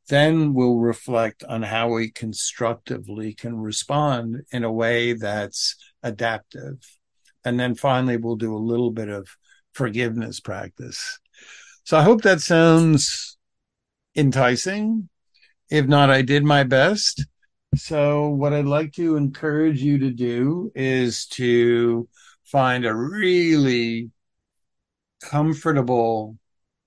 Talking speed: 115 wpm